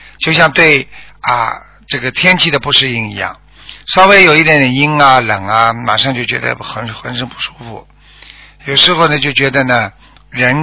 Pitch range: 125-160 Hz